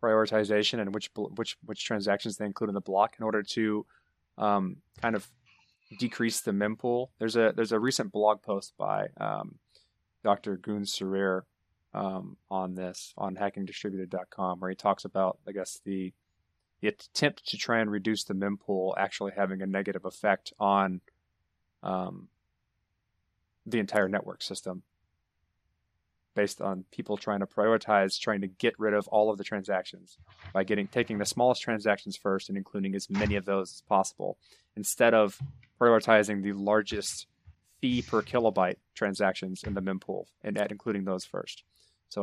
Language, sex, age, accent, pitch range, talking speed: English, male, 20-39, American, 95-110 Hz, 155 wpm